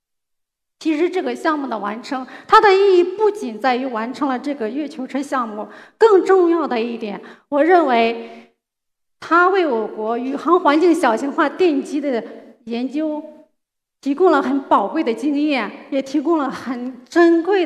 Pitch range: 250-330 Hz